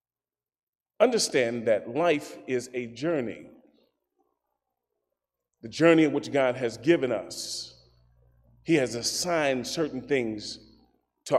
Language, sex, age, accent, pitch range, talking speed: English, male, 30-49, American, 110-175 Hz, 105 wpm